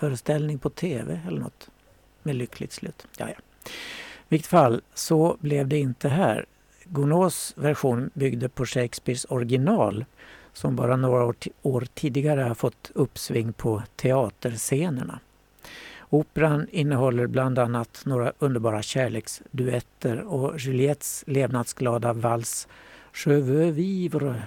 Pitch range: 120-145 Hz